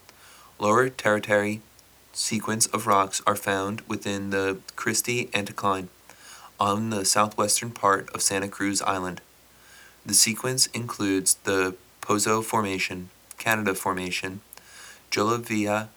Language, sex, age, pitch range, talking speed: English, male, 30-49, 95-110 Hz, 105 wpm